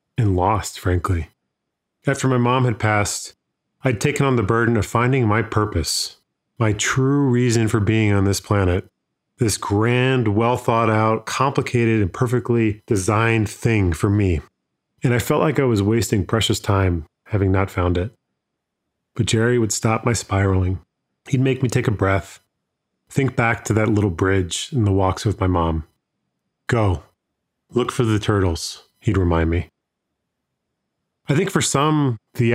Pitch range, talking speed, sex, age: 100-125 Hz, 155 wpm, male, 30-49